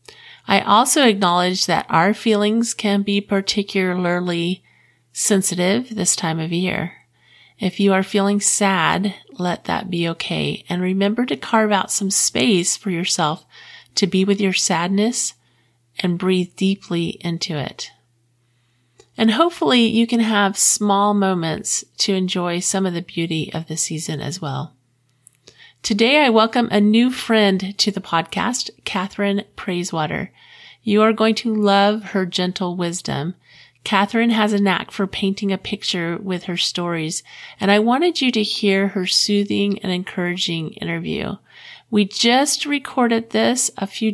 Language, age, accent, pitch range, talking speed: English, 40-59, American, 175-210 Hz, 145 wpm